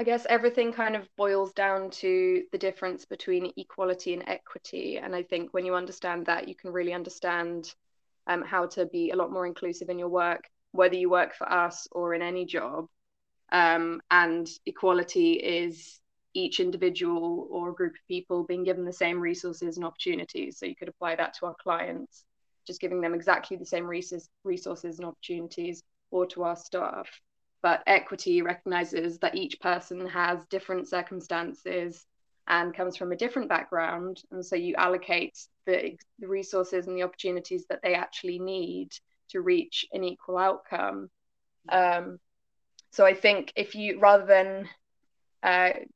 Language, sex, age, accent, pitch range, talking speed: English, female, 20-39, British, 175-195 Hz, 165 wpm